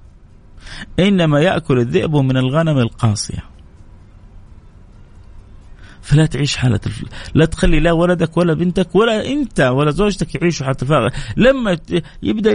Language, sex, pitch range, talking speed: Arabic, male, 105-165 Hz, 120 wpm